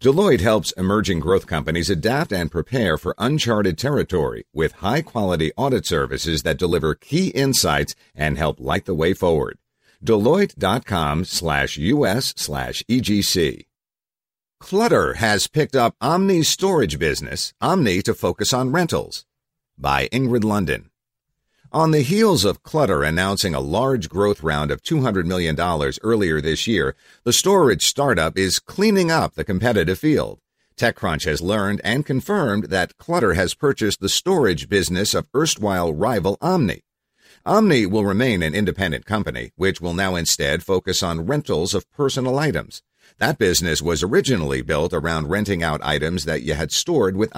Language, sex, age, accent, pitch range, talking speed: English, male, 50-69, American, 85-130 Hz, 145 wpm